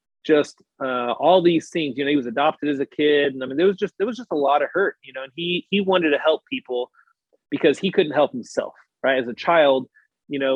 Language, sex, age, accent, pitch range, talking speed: English, male, 30-49, American, 120-155 Hz, 260 wpm